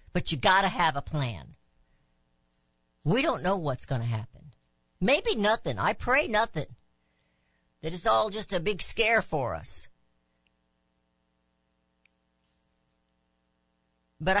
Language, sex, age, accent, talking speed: English, female, 50-69, American, 110 wpm